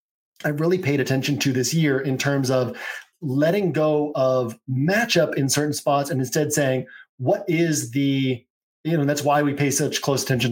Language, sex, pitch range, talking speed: English, male, 130-160 Hz, 185 wpm